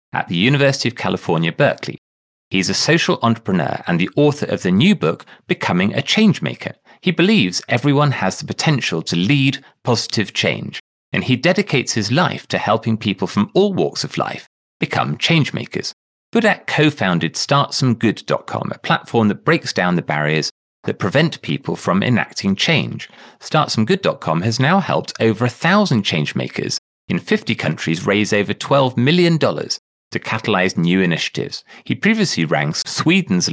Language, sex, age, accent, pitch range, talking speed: English, male, 30-49, British, 100-150 Hz, 145 wpm